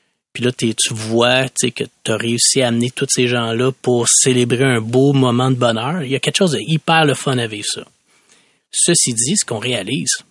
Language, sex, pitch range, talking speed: French, male, 115-145 Hz, 215 wpm